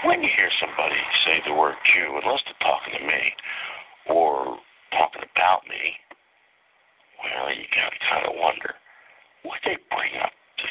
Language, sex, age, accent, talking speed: English, male, 60-79, American, 150 wpm